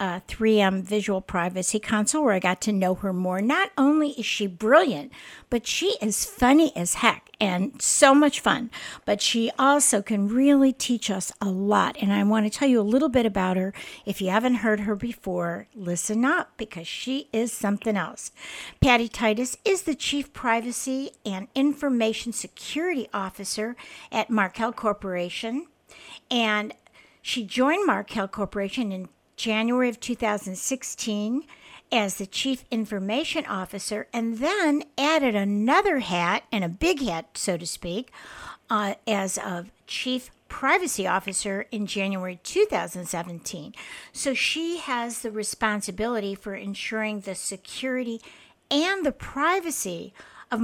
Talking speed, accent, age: 145 wpm, American, 60-79